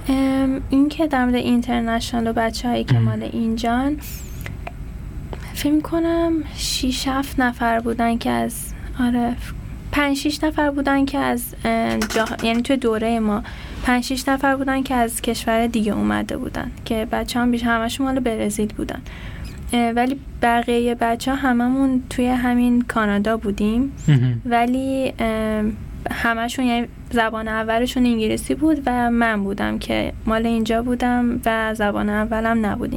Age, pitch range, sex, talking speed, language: 10-29, 225-255 Hz, female, 125 wpm, Persian